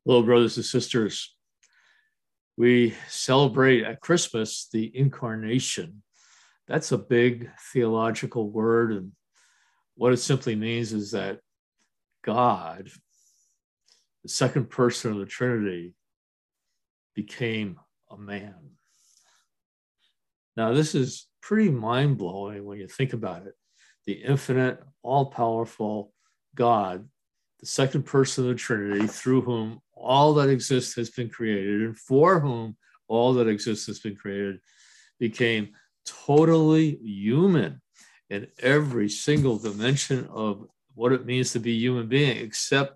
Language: English